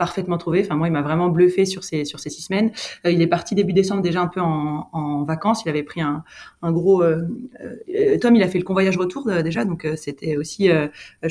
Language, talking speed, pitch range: French, 235 wpm, 155-185 Hz